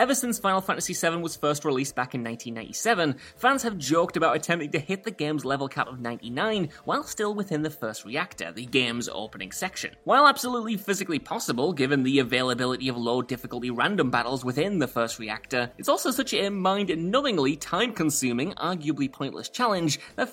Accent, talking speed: British, 180 wpm